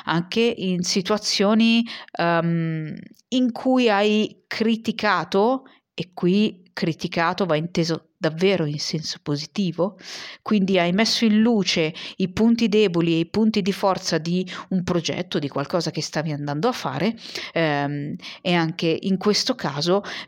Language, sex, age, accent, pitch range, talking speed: Italian, female, 40-59, native, 165-215 Hz, 130 wpm